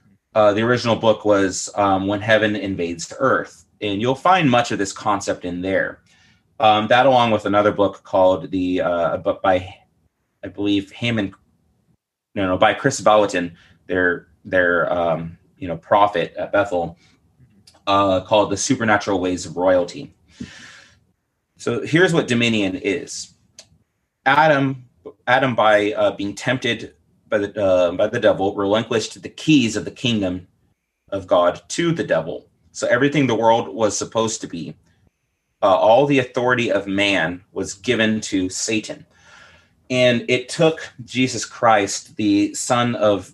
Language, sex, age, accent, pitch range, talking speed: English, male, 30-49, American, 95-120 Hz, 145 wpm